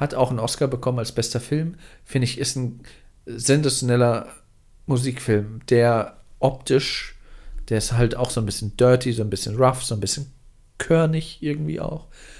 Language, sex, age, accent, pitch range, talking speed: German, male, 40-59, German, 110-130 Hz, 165 wpm